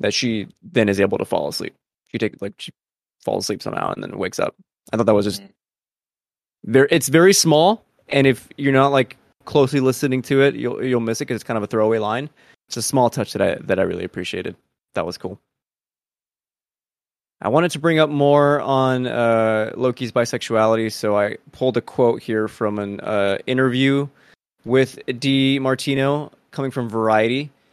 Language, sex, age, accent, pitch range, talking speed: English, male, 20-39, American, 110-135 Hz, 190 wpm